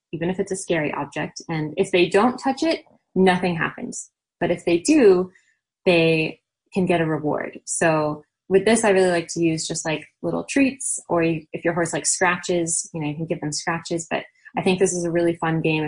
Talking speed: 215 wpm